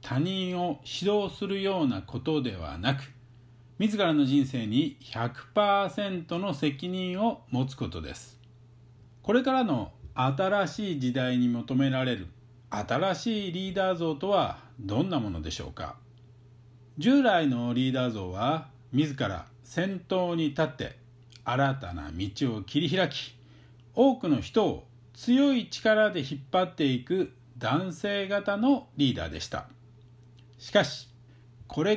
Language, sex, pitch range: Japanese, male, 120-180 Hz